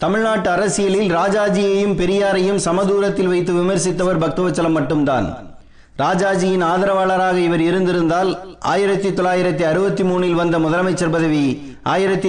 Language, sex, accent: Tamil, male, native